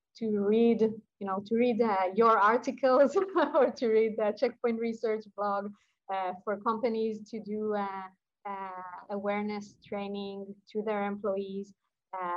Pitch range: 185-220 Hz